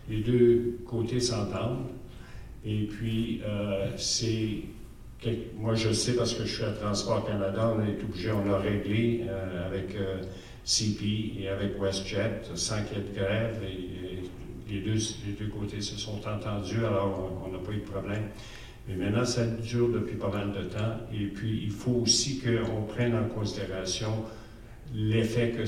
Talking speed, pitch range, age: 175 wpm, 100-115 Hz, 60-79